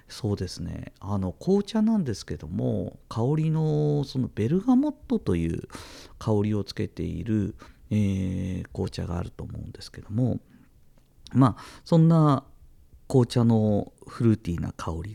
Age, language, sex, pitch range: 50-69, Japanese, male, 95-150 Hz